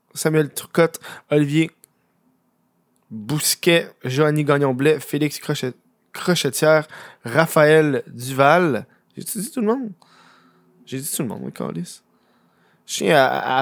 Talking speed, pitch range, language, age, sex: 100 wpm, 130-165 Hz, French, 20-39, male